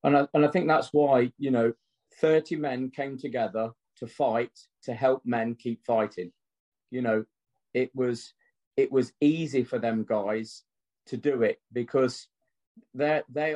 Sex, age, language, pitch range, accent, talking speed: male, 40-59, English, 125-155 Hz, British, 155 wpm